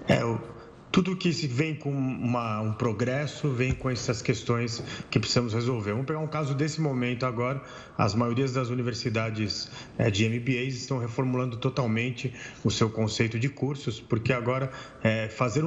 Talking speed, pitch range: 160 wpm, 115-130 Hz